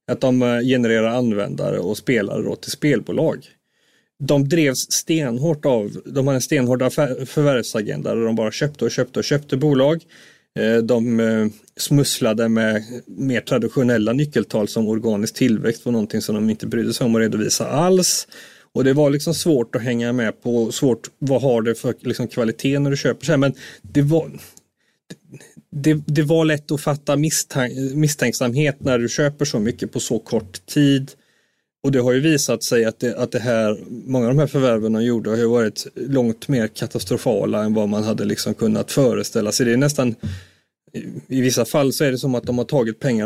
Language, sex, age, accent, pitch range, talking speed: Swedish, male, 30-49, native, 115-145 Hz, 185 wpm